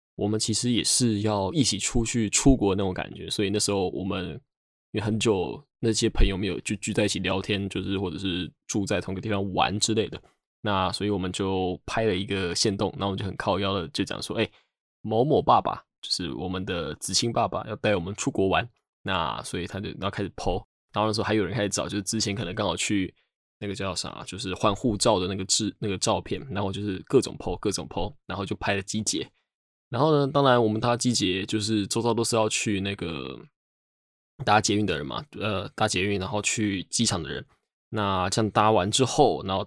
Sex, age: male, 20-39